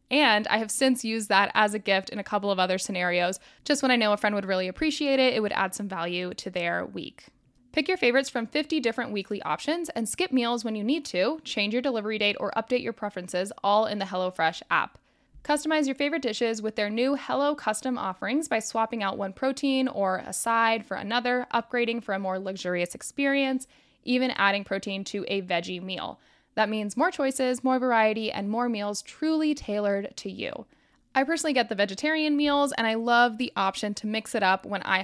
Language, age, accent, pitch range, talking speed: English, 10-29, American, 200-260 Hz, 210 wpm